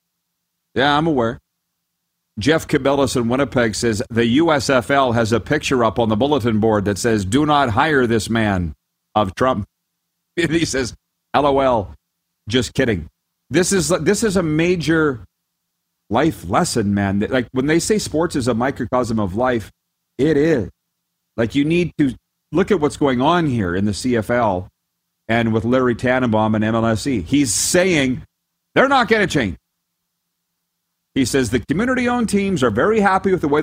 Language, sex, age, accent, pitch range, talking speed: English, male, 40-59, American, 115-170 Hz, 160 wpm